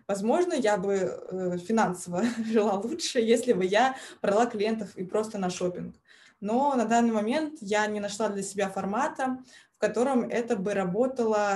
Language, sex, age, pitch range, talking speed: Russian, female, 20-39, 190-235 Hz, 155 wpm